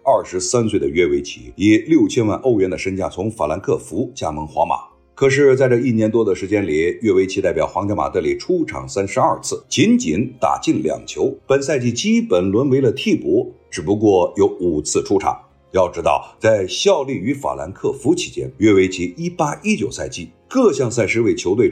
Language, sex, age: Chinese, male, 50-69